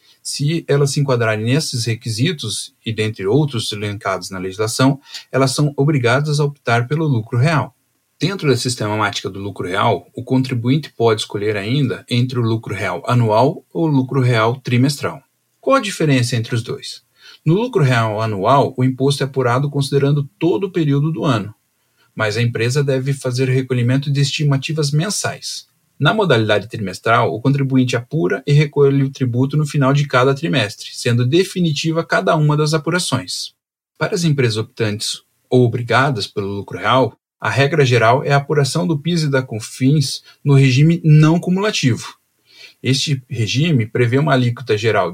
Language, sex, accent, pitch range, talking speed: Portuguese, male, Brazilian, 120-150 Hz, 160 wpm